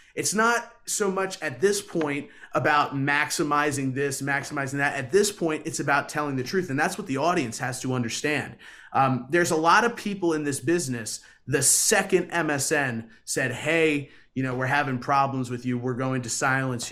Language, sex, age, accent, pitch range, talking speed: English, male, 30-49, American, 130-170 Hz, 190 wpm